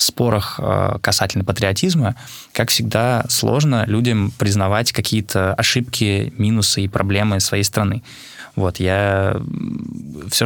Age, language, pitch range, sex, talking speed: 20-39, Russian, 100-115 Hz, male, 110 wpm